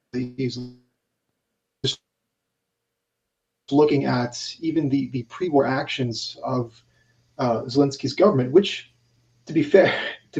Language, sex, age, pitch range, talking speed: English, male, 30-49, 125-145 Hz, 100 wpm